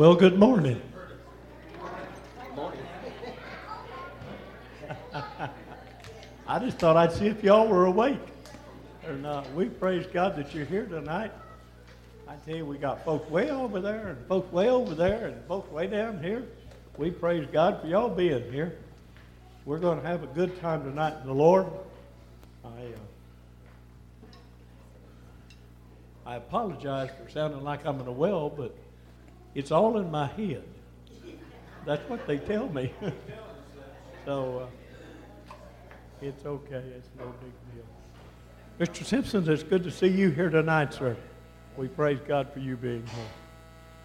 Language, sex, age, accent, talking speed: English, male, 60-79, American, 145 wpm